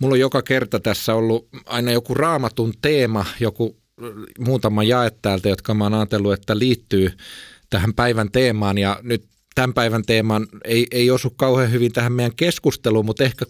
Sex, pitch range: male, 105-130 Hz